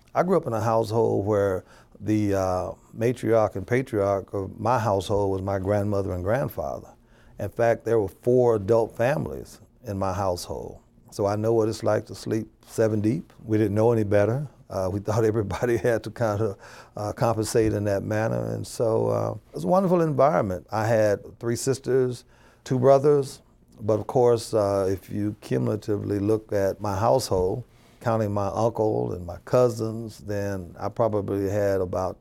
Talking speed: 175 wpm